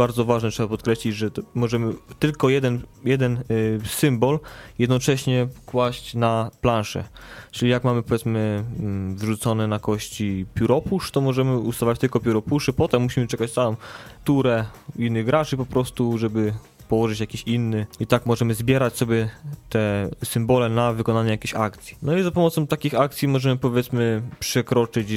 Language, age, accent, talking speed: Polish, 20-39, native, 145 wpm